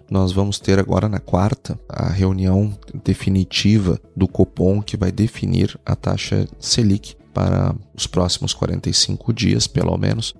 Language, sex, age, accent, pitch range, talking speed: Portuguese, male, 30-49, Brazilian, 95-115 Hz, 140 wpm